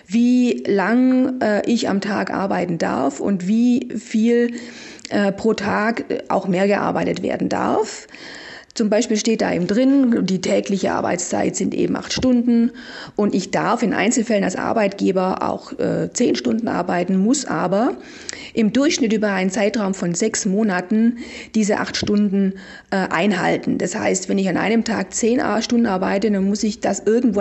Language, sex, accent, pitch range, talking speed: German, female, German, 195-240 Hz, 160 wpm